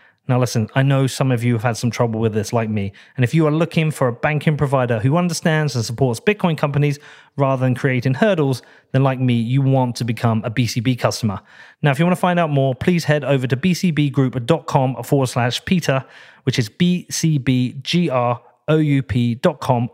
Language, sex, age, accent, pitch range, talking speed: English, male, 30-49, British, 125-150 Hz, 190 wpm